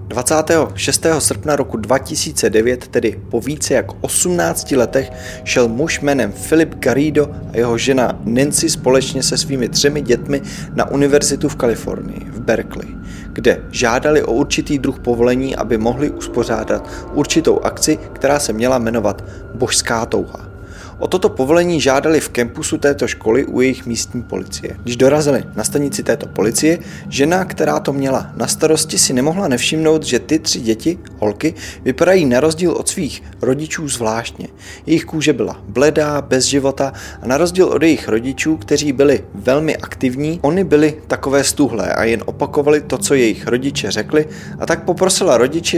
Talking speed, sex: 155 wpm, male